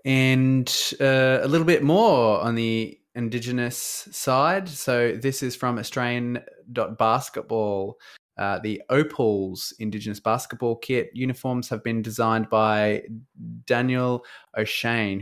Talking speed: 105 wpm